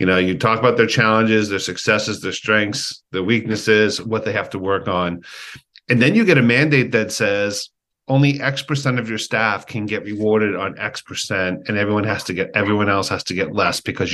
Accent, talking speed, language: American, 215 wpm, English